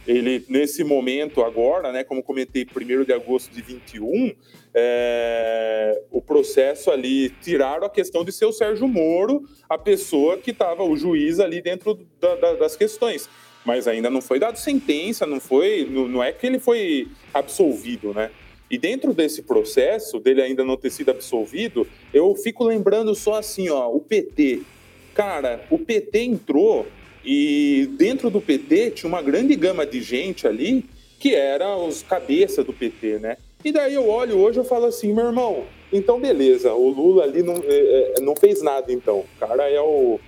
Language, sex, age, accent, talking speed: Portuguese, male, 20-39, Brazilian, 175 wpm